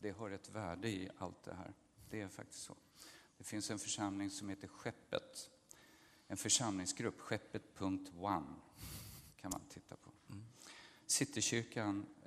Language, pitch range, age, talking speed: Swedish, 100-110 Hz, 50-69, 130 wpm